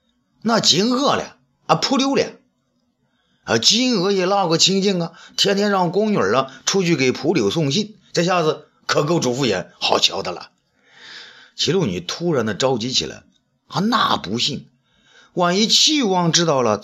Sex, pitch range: male, 155-220 Hz